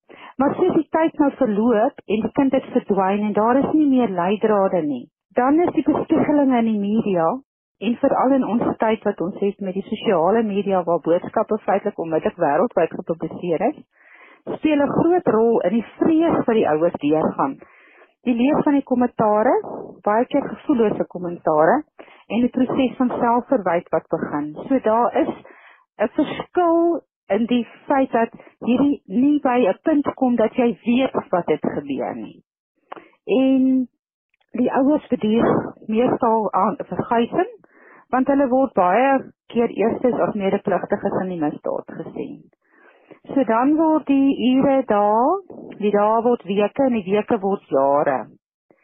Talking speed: 160 wpm